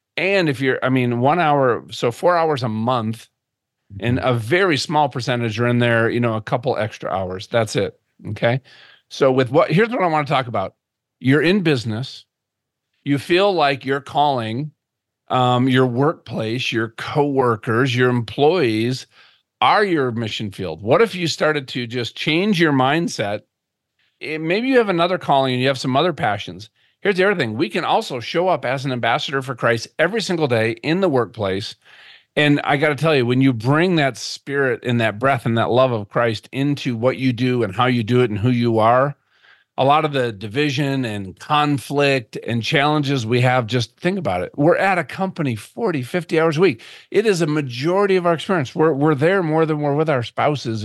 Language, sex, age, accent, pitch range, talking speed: English, male, 40-59, American, 120-155 Hz, 200 wpm